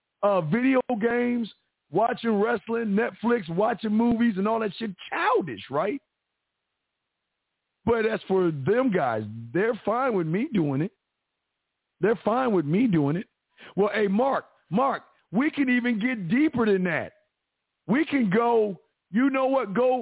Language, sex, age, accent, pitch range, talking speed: English, male, 50-69, American, 200-250 Hz, 145 wpm